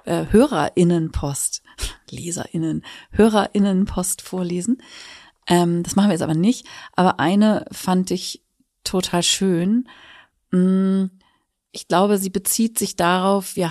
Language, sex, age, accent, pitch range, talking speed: German, female, 40-59, German, 175-200 Hz, 100 wpm